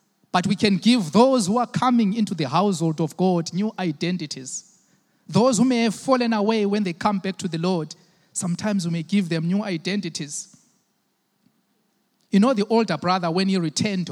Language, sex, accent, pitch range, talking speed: English, male, South African, 170-210 Hz, 185 wpm